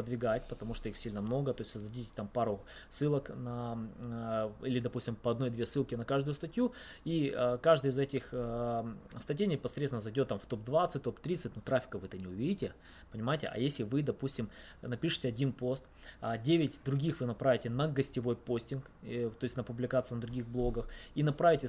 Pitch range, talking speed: 120-145 Hz, 185 wpm